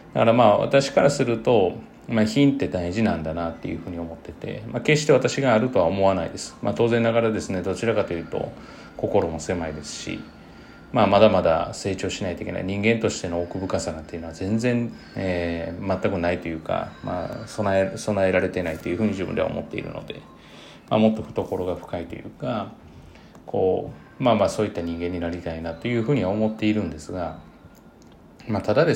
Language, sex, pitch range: Japanese, male, 90-115 Hz